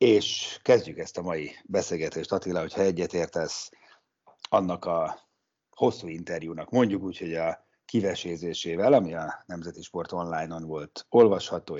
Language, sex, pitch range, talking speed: Hungarian, male, 85-105 Hz, 125 wpm